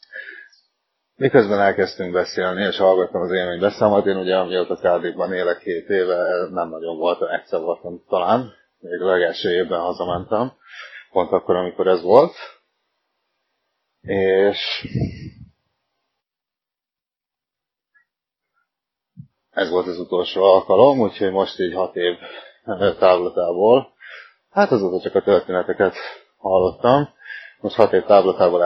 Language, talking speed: Hungarian, 110 wpm